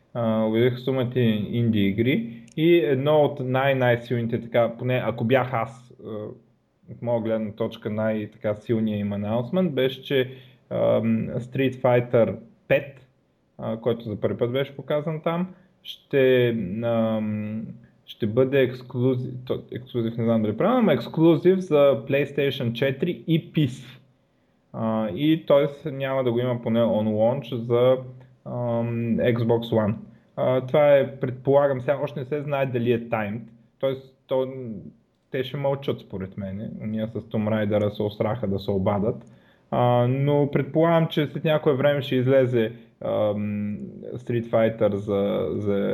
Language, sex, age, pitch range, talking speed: Bulgarian, male, 20-39, 110-135 Hz, 140 wpm